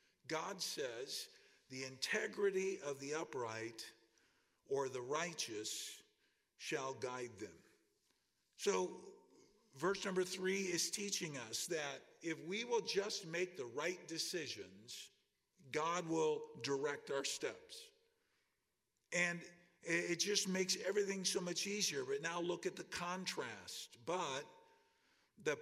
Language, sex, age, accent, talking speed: English, male, 50-69, American, 115 wpm